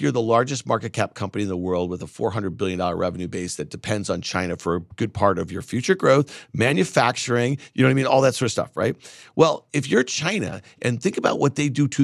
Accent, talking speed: American, 250 wpm